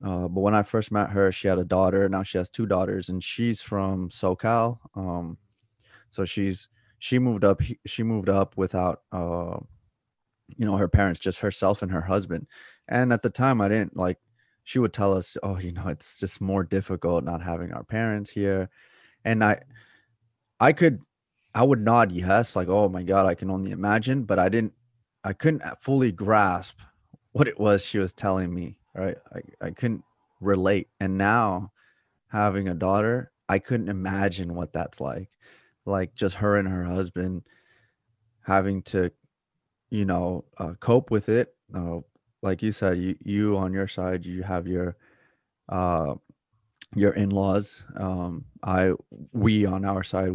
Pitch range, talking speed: 90-110 Hz, 170 wpm